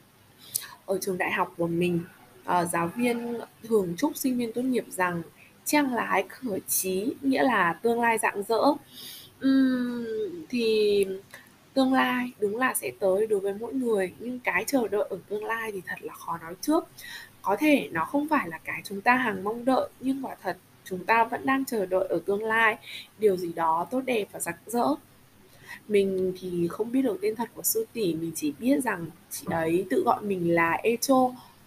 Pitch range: 185-255 Hz